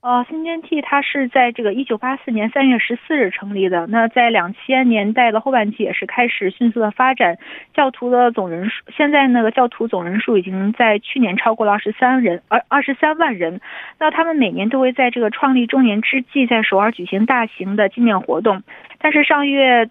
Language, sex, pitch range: Korean, female, 210-260 Hz